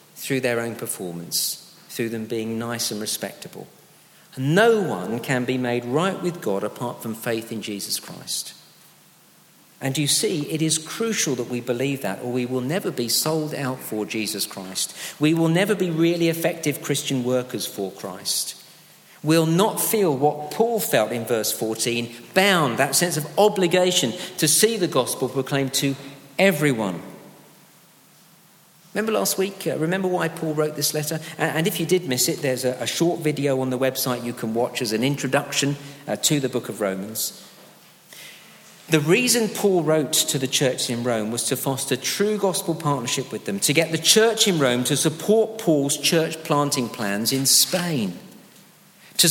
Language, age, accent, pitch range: English, 50-69, British, 125-180 Hz